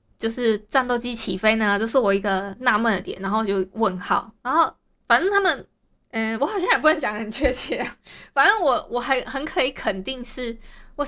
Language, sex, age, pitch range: Chinese, female, 20-39, 200-255 Hz